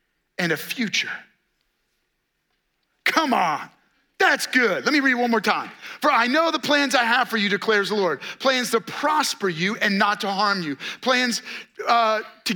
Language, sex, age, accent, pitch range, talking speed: English, male, 30-49, American, 205-280 Hz, 175 wpm